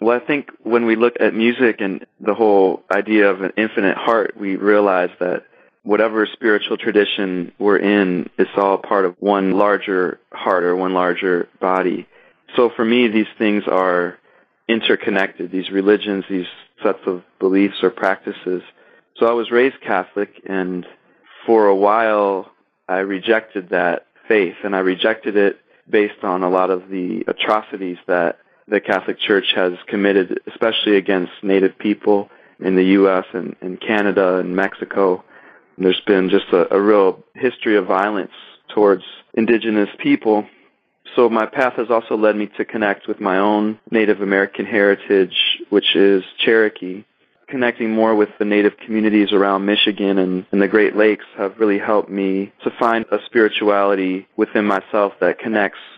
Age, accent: 20-39, American